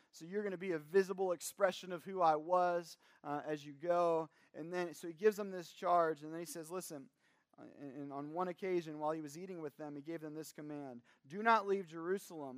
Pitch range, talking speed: 140-175 Hz, 225 wpm